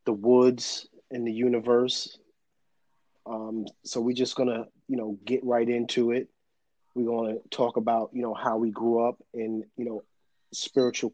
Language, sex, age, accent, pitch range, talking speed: English, male, 30-49, American, 110-120 Hz, 160 wpm